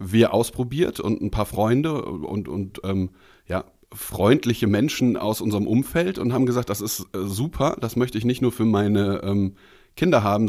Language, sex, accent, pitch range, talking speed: German, male, German, 100-115 Hz, 175 wpm